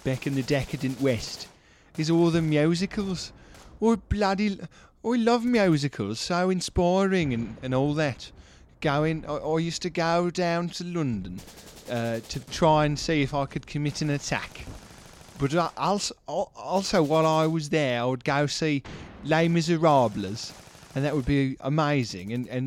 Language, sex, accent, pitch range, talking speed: English, male, British, 125-160 Hz, 165 wpm